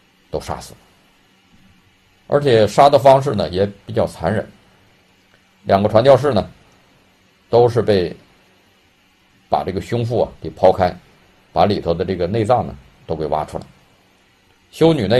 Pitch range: 90-110 Hz